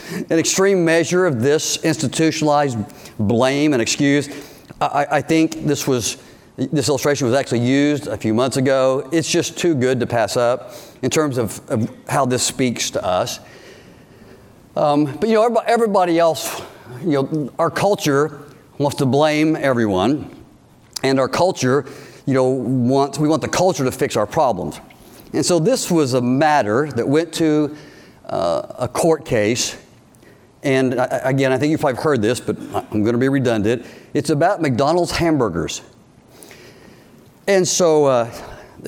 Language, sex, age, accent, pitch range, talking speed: English, male, 50-69, American, 130-165 Hz, 155 wpm